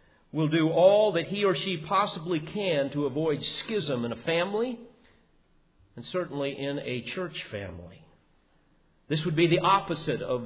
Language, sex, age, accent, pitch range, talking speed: English, male, 50-69, American, 135-180 Hz, 155 wpm